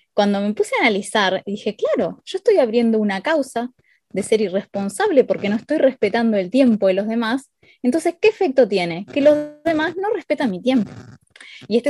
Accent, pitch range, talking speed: Argentinian, 200-255 Hz, 185 wpm